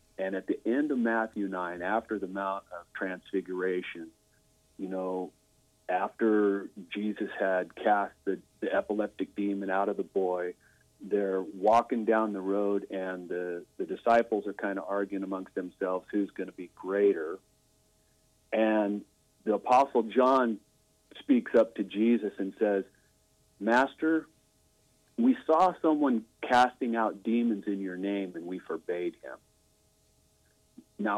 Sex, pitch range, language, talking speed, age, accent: male, 95-115 Hz, English, 135 wpm, 40-59, American